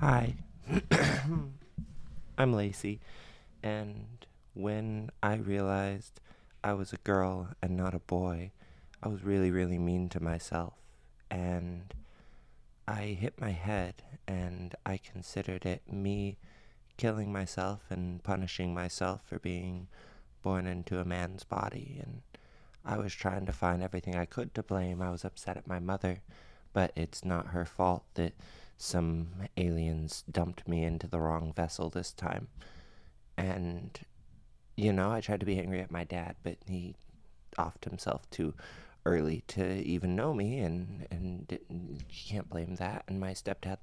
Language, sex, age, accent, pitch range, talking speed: English, male, 20-39, American, 90-105 Hz, 145 wpm